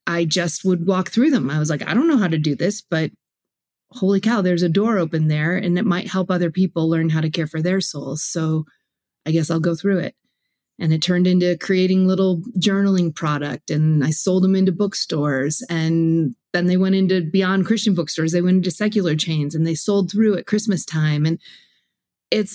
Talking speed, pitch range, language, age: 215 wpm, 170-210 Hz, English, 30-49